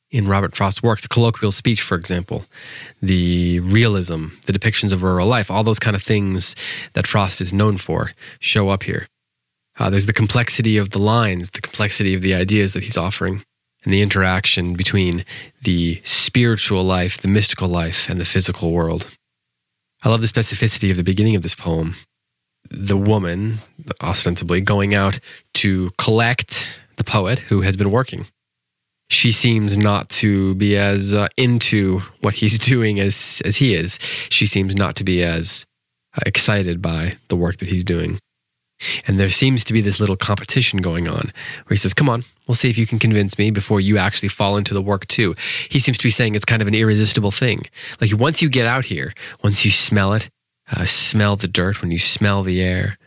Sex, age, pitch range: male, 20-39, 95-110 Hz